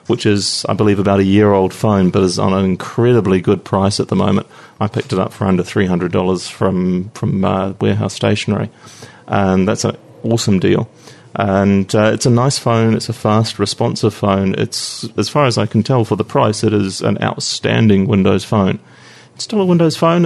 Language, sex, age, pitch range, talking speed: English, male, 30-49, 100-120 Hz, 200 wpm